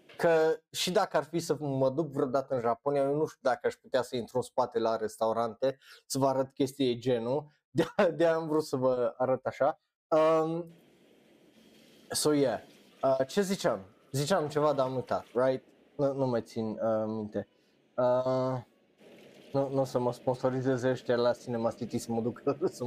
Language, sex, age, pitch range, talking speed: Romanian, male, 20-39, 130-165 Hz, 180 wpm